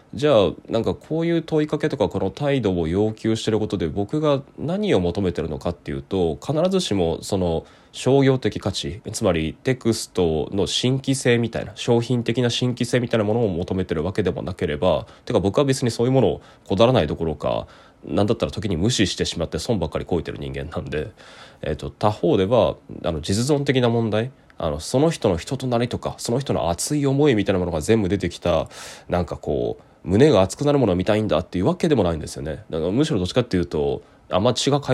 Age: 20-39